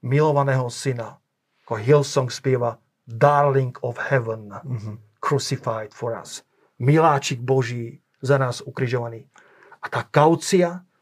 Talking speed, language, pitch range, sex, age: 105 wpm, Slovak, 130-150 Hz, male, 40-59